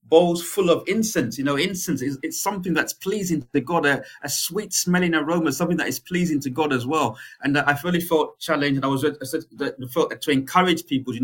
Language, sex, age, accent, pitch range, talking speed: English, male, 30-49, British, 135-160 Hz, 220 wpm